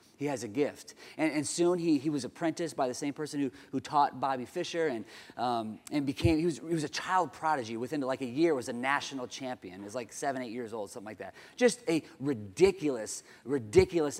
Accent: American